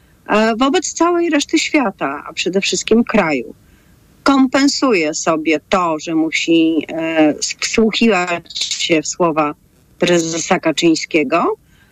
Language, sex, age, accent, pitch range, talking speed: Polish, female, 40-59, native, 175-230 Hz, 95 wpm